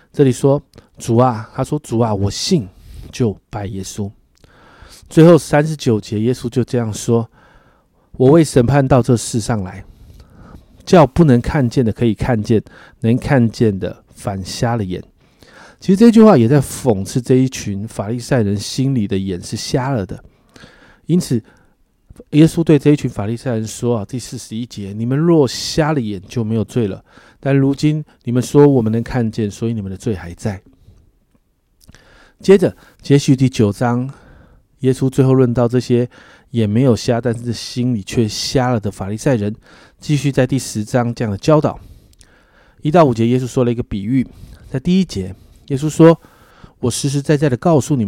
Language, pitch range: Chinese, 110-135 Hz